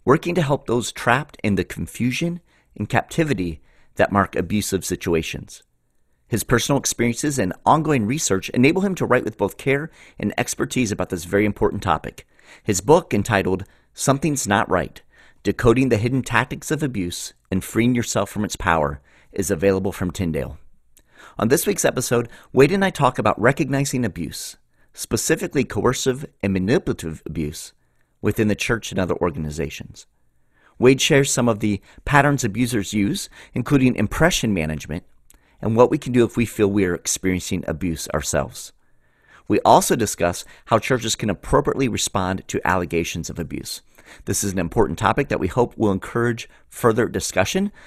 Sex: male